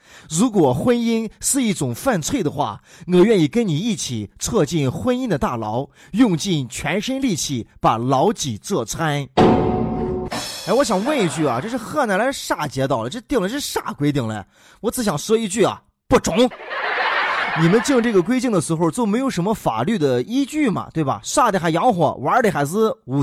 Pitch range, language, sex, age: 140-220 Hz, Chinese, male, 20-39